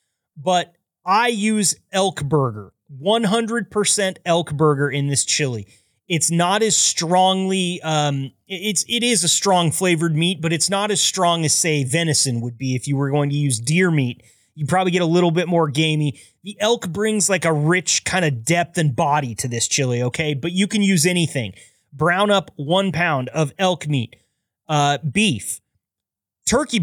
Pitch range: 140-190 Hz